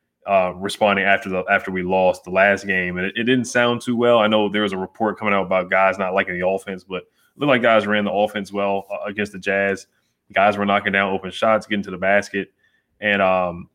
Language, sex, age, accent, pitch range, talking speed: English, male, 20-39, American, 100-110 Hz, 245 wpm